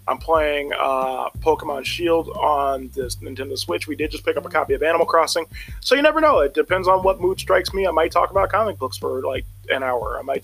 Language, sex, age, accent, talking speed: English, male, 20-39, American, 240 wpm